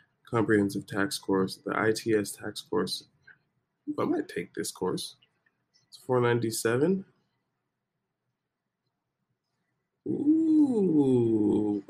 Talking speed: 75 wpm